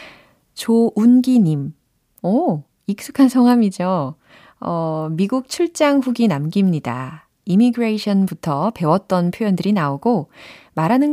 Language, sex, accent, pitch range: Korean, female, native, 155-215 Hz